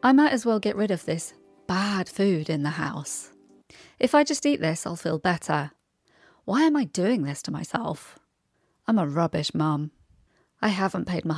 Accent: British